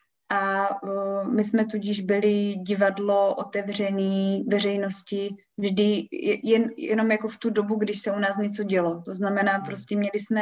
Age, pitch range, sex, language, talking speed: 20-39, 190-210 Hz, female, Czech, 155 wpm